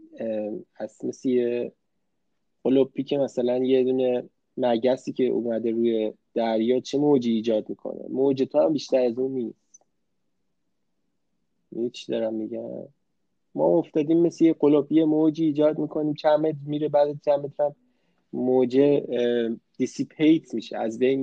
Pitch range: 115-150 Hz